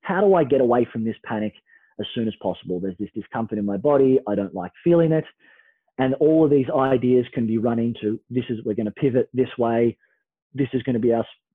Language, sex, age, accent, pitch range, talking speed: English, male, 30-49, Australian, 120-165 Hz, 240 wpm